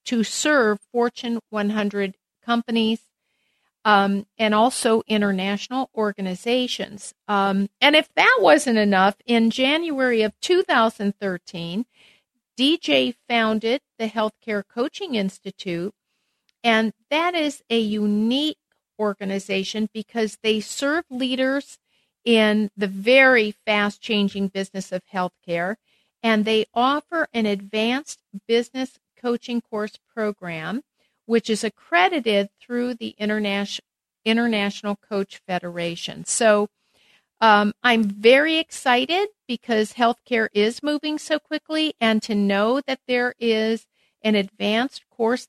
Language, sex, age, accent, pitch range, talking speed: English, female, 50-69, American, 205-255 Hz, 105 wpm